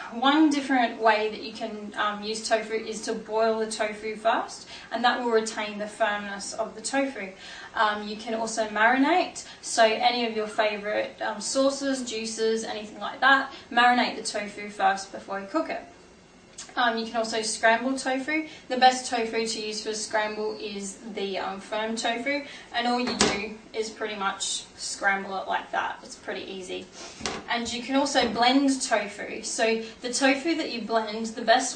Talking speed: 180 wpm